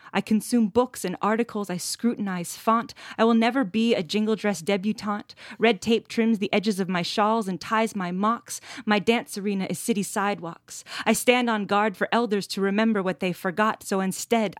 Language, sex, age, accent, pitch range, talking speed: English, female, 20-39, American, 195-235 Hz, 195 wpm